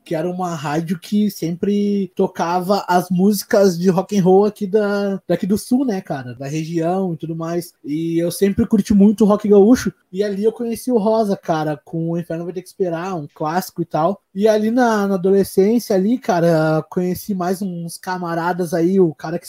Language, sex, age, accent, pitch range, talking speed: Portuguese, male, 20-39, Brazilian, 170-210 Hz, 195 wpm